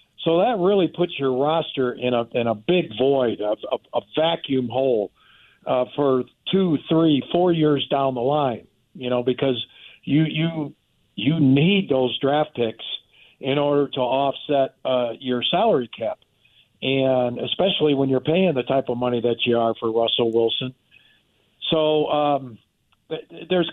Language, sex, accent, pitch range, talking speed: English, male, American, 125-160 Hz, 160 wpm